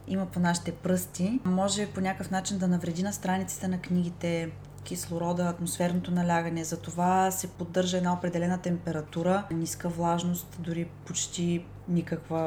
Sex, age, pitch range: female, 20-39, 160-195 Hz